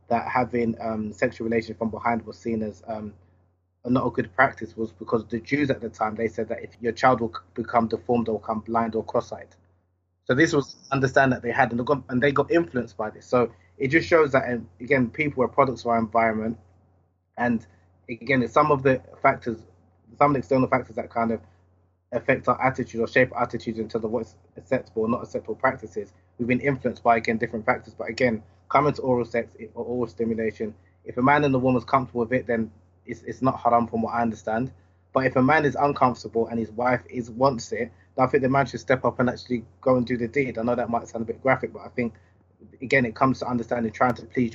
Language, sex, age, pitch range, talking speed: English, male, 20-39, 110-125 Hz, 235 wpm